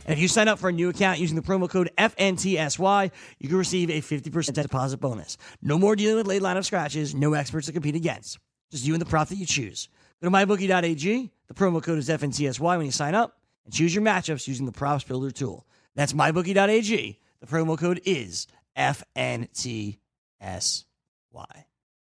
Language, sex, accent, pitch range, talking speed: English, male, American, 155-210 Hz, 190 wpm